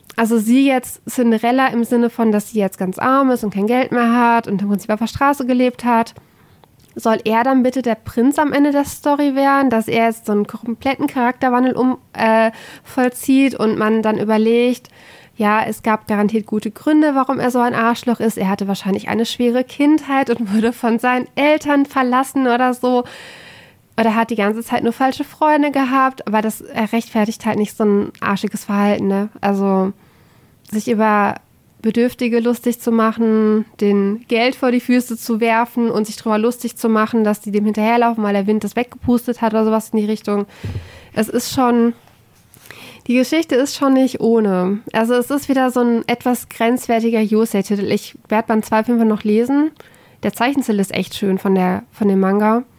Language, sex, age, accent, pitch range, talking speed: German, female, 20-39, German, 215-250 Hz, 185 wpm